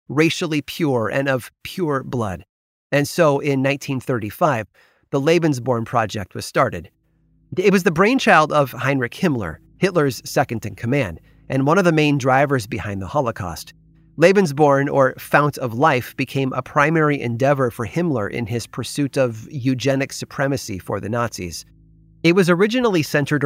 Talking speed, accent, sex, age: 145 wpm, American, male, 30-49